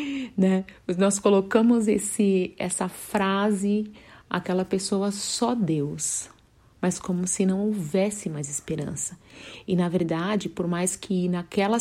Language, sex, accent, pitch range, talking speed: Portuguese, female, Brazilian, 160-195 Hz, 125 wpm